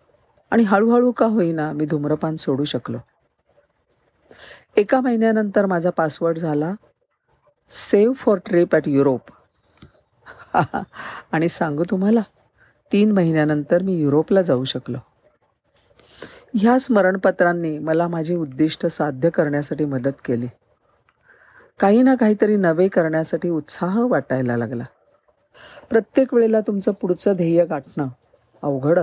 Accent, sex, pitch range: native, female, 145-200 Hz